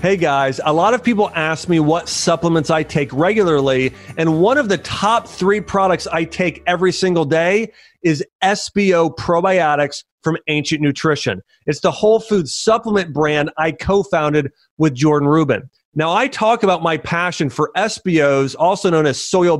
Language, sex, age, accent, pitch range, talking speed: English, male, 30-49, American, 145-190 Hz, 170 wpm